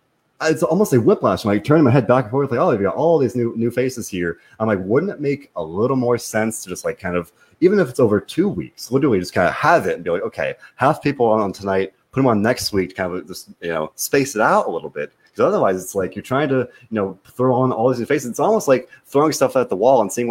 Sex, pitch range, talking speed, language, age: male, 95-130 Hz, 295 wpm, English, 30-49